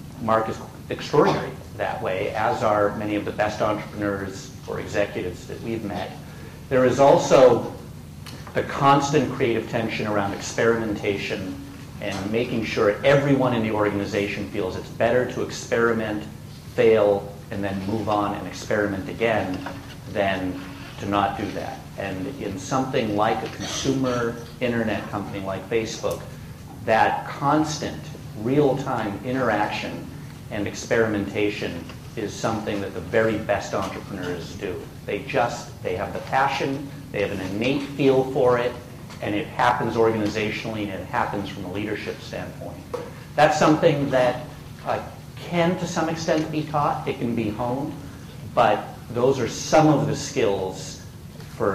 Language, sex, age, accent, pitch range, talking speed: English, male, 50-69, American, 100-135 Hz, 140 wpm